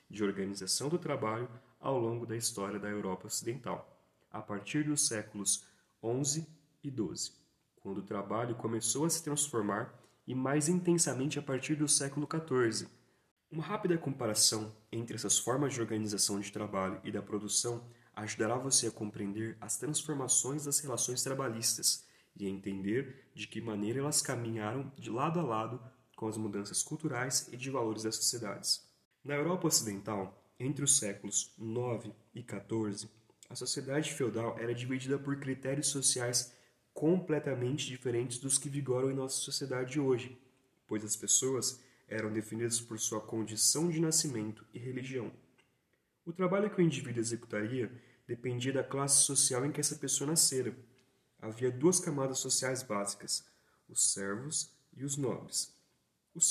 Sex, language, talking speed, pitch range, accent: male, Portuguese, 150 wpm, 110-140 Hz, Brazilian